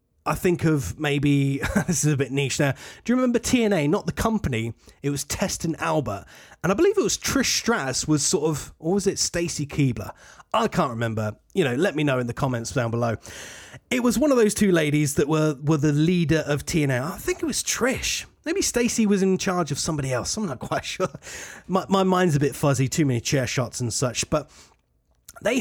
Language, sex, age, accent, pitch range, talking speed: English, male, 30-49, British, 130-180 Hz, 225 wpm